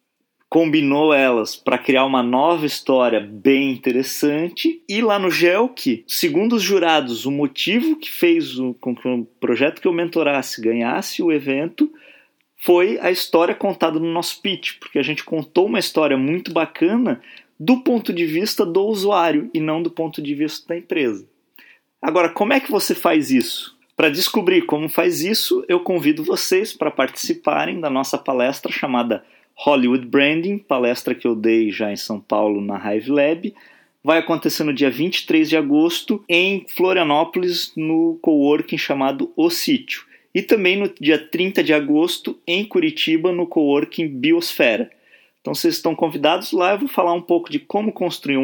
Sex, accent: male, Brazilian